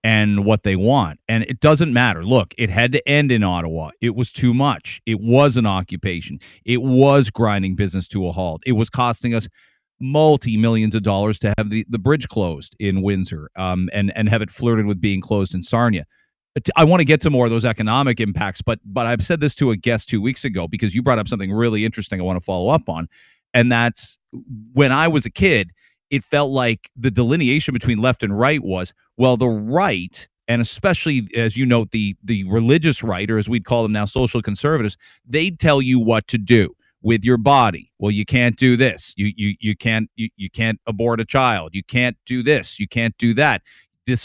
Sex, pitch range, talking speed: male, 105-125 Hz, 215 wpm